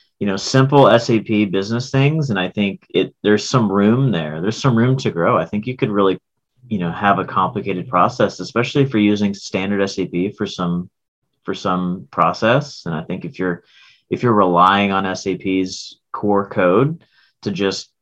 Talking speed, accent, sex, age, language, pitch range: 185 wpm, American, male, 30-49, English, 95-120 Hz